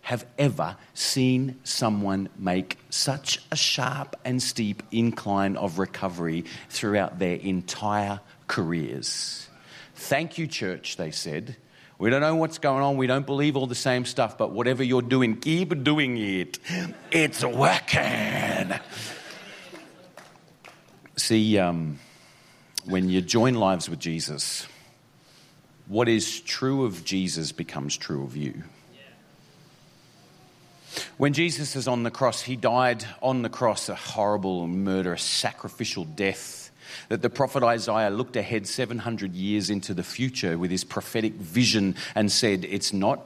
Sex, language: male, English